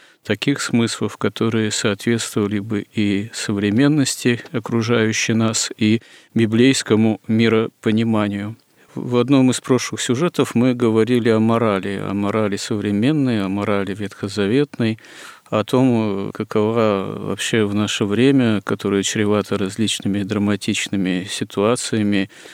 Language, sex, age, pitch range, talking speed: Russian, male, 40-59, 100-115 Hz, 105 wpm